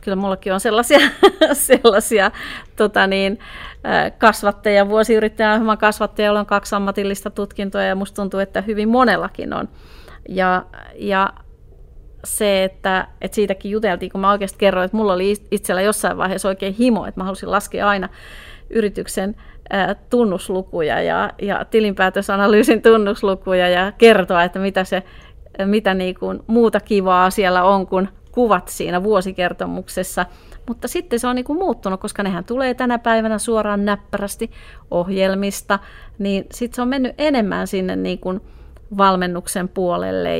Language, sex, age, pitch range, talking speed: Finnish, female, 30-49, 180-210 Hz, 135 wpm